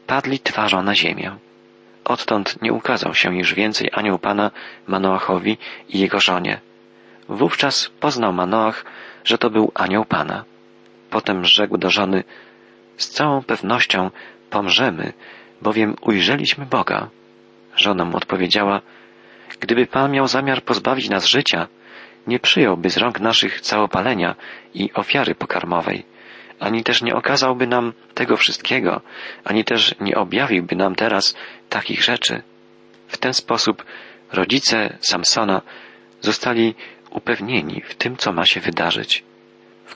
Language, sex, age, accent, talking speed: Polish, male, 40-59, native, 125 wpm